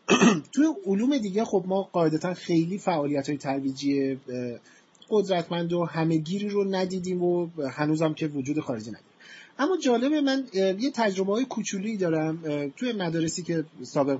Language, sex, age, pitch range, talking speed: Persian, male, 30-49, 155-210 Hz, 145 wpm